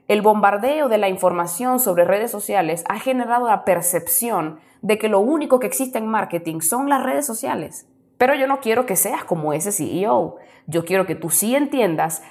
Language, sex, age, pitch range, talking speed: Spanish, female, 20-39, 175-240 Hz, 190 wpm